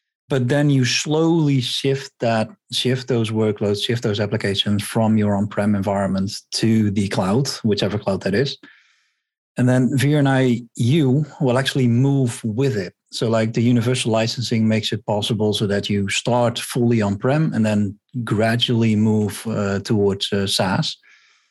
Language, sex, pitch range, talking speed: English, male, 105-125 Hz, 155 wpm